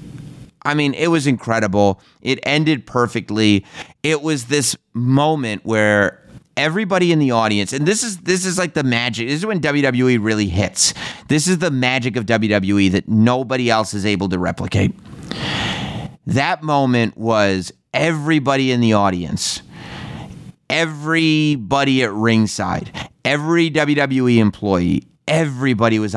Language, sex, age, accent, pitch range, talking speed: English, male, 30-49, American, 105-135 Hz, 135 wpm